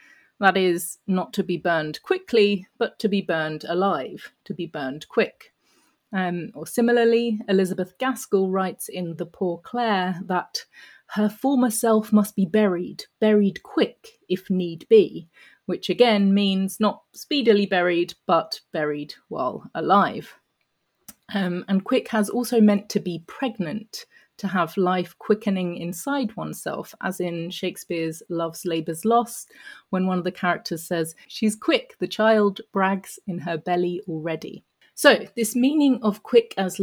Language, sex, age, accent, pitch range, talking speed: English, female, 30-49, British, 175-225 Hz, 145 wpm